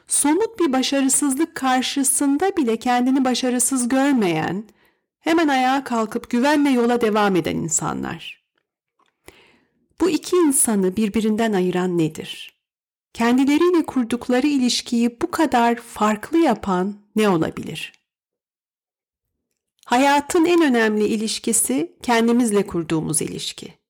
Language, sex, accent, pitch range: Turkish, female, native, 195-270 Hz